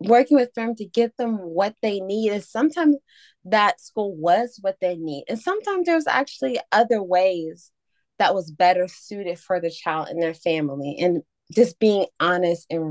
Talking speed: 180 wpm